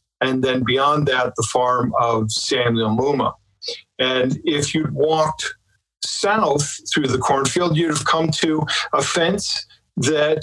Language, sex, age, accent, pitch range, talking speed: English, male, 50-69, American, 125-165 Hz, 140 wpm